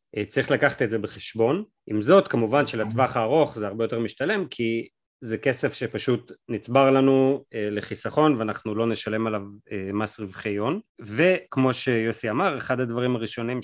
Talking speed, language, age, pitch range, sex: 150 wpm, Hebrew, 30-49, 110-130 Hz, male